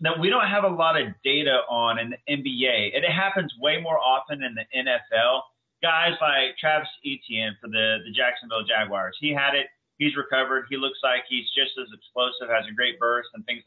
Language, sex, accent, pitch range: English, male, American, 125-160 Hz